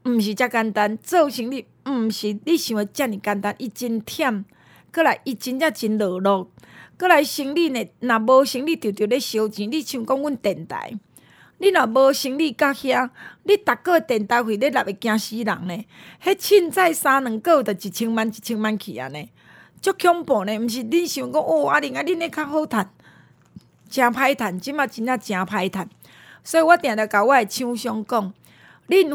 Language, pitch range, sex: Chinese, 210-285 Hz, female